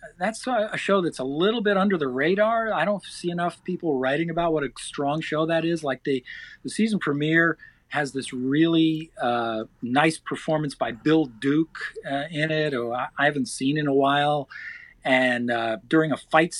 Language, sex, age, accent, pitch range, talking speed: English, male, 40-59, American, 135-165 Hz, 190 wpm